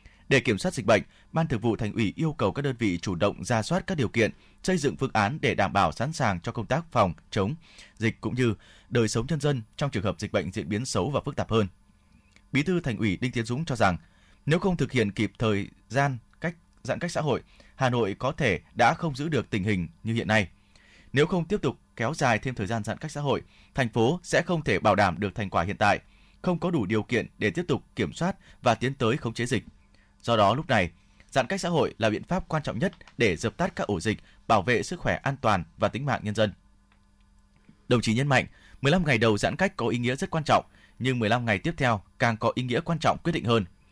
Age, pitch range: 20-39, 100-140 Hz